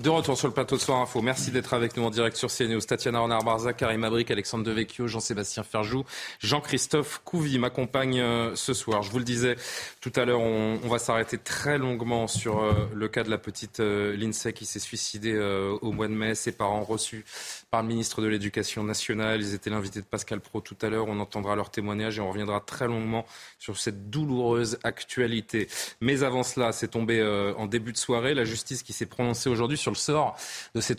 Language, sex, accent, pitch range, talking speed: French, male, French, 105-125 Hz, 205 wpm